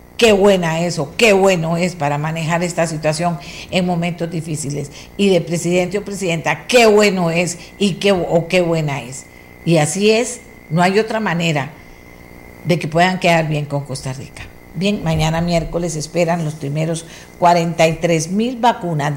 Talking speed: 160 wpm